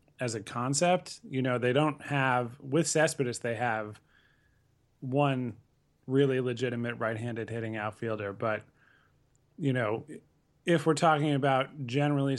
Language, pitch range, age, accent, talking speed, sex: English, 120-140 Hz, 30-49, American, 130 wpm, male